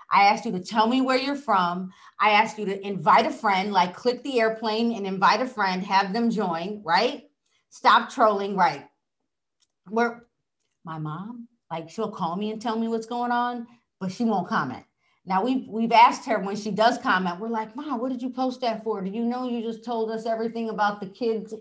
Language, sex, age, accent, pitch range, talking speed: English, female, 40-59, American, 200-250 Hz, 215 wpm